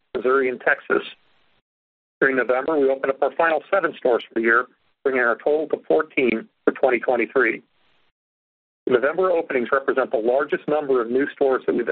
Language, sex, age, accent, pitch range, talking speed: English, male, 40-59, American, 130-185 Hz, 170 wpm